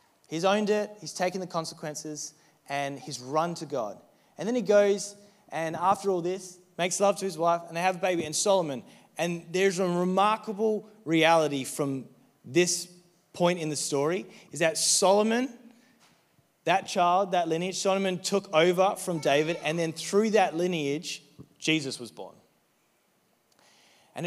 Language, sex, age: English, male, 20-39